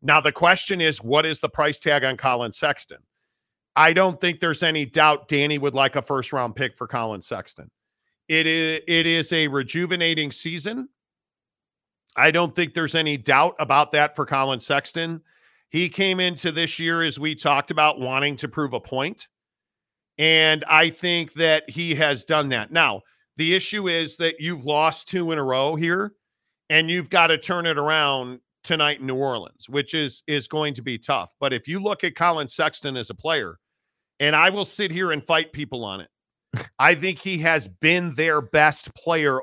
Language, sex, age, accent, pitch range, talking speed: English, male, 40-59, American, 140-170 Hz, 190 wpm